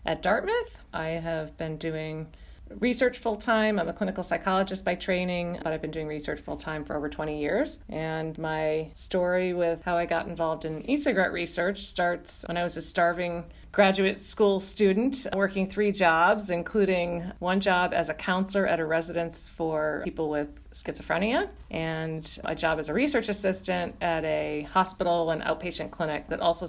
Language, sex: English, female